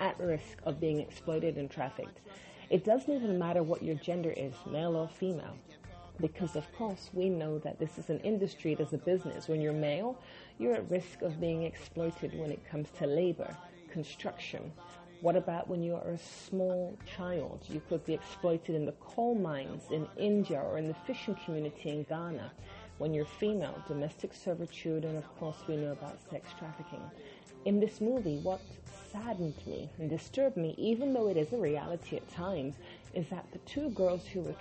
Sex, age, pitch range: female, 30-49, 155-190 Hz